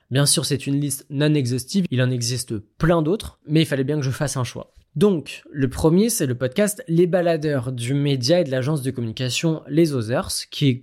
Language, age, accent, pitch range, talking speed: French, 20-39, French, 130-175 Hz, 220 wpm